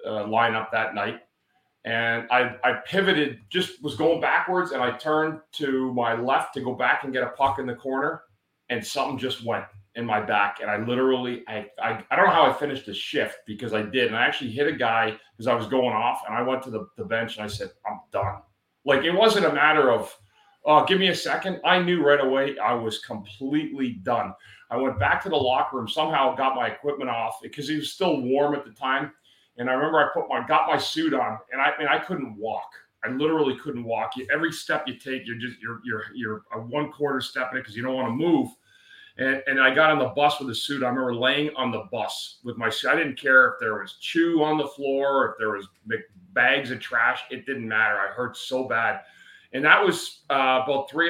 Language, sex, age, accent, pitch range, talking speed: English, male, 30-49, American, 115-150 Hz, 240 wpm